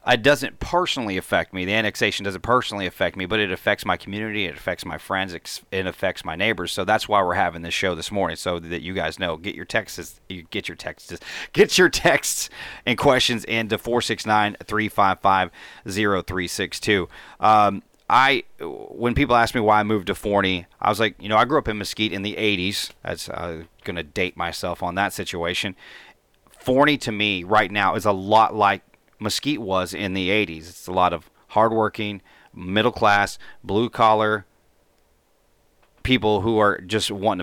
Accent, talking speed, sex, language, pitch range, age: American, 195 wpm, male, English, 95-110 Hz, 30-49